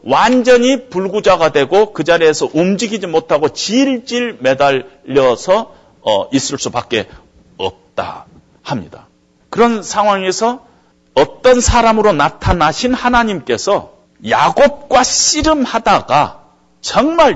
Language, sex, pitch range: Korean, male, 170-255 Hz